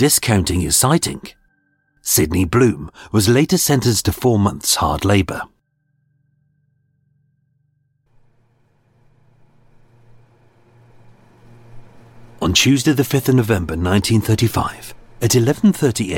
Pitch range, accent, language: 95-130 Hz, British, English